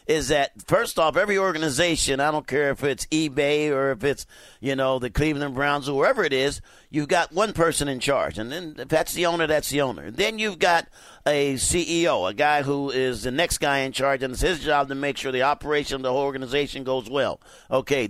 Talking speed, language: 230 wpm, English